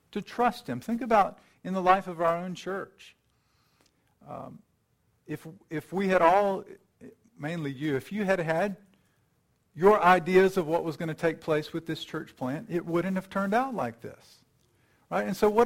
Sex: male